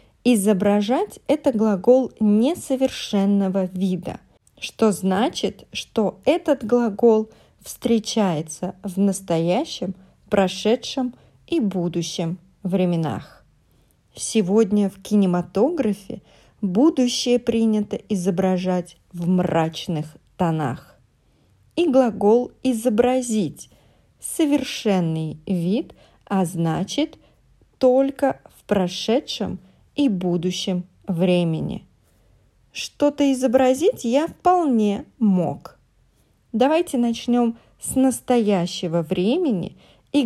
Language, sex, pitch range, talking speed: English, female, 185-255 Hz, 75 wpm